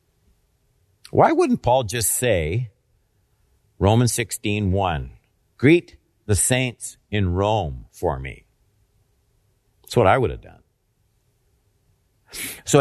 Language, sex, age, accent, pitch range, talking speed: English, male, 50-69, American, 105-145 Hz, 105 wpm